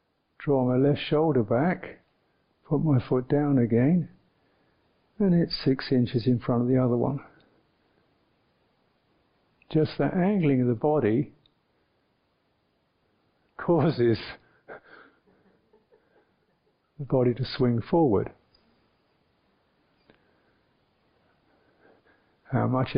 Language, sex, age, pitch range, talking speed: English, male, 60-79, 120-150 Hz, 90 wpm